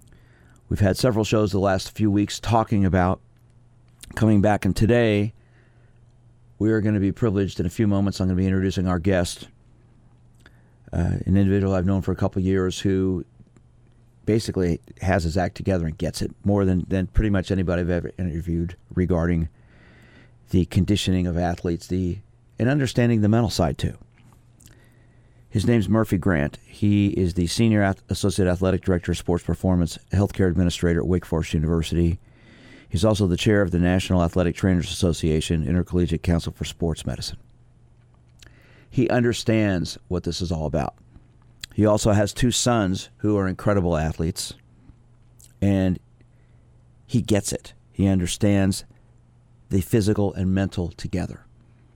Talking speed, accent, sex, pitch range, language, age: 155 wpm, American, male, 90-115 Hz, English, 50-69